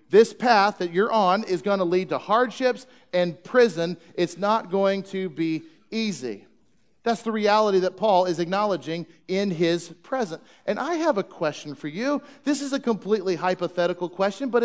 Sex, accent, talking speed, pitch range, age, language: male, American, 175 wpm, 165-220 Hz, 40-59, English